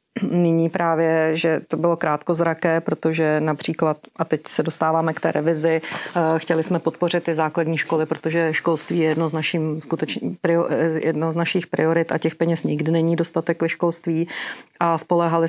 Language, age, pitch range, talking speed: Czech, 40-59, 155-170 Hz, 165 wpm